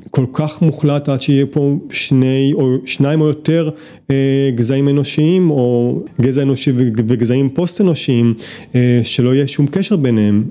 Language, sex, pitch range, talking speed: Hebrew, male, 120-150 Hz, 135 wpm